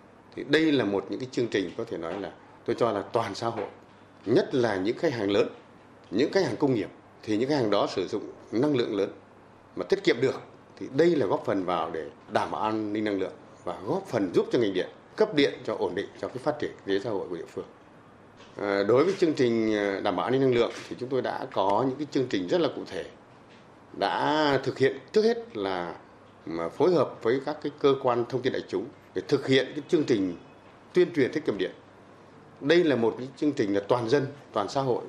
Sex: male